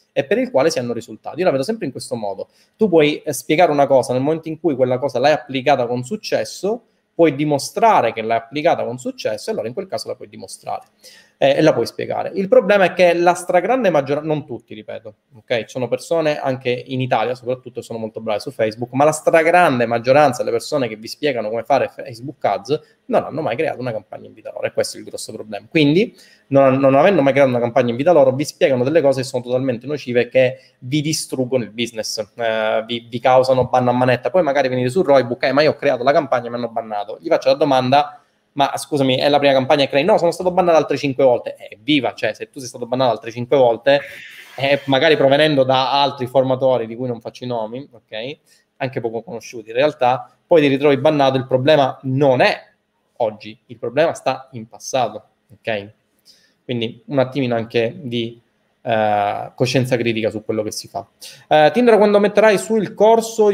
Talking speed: 215 wpm